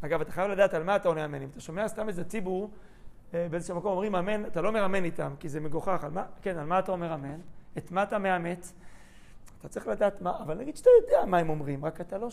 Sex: male